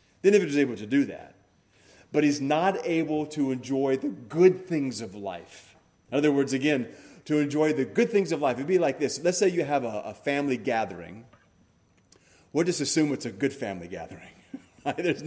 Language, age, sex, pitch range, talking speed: English, 30-49, male, 120-170 Hz, 195 wpm